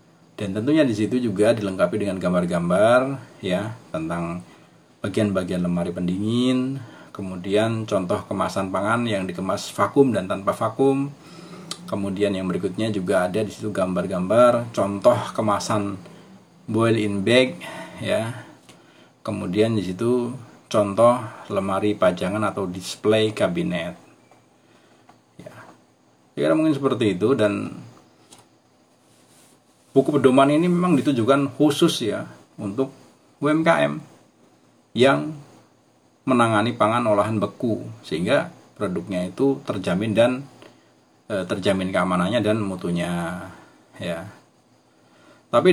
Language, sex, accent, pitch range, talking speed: Indonesian, male, native, 90-130 Hz, 100 wpm